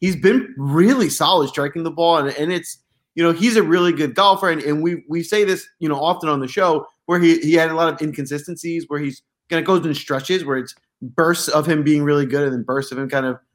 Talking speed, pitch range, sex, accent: 270 wpm, 140-180 Hz, male, American